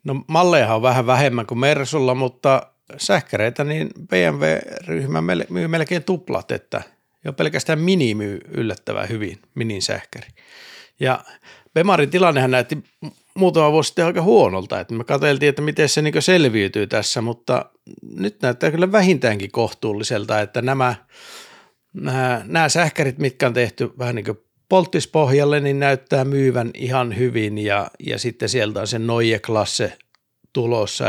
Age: 50-69